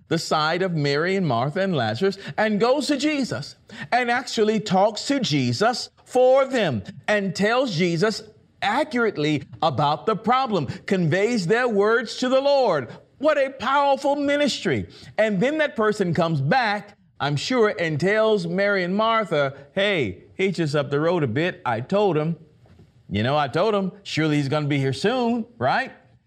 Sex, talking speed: male, 165 wpm